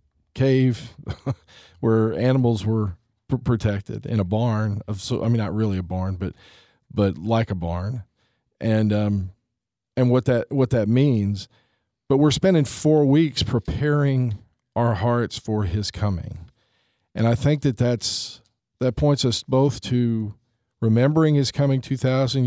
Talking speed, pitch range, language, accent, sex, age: 145 wpm, 105-125 Hz, English, American, male, 40-59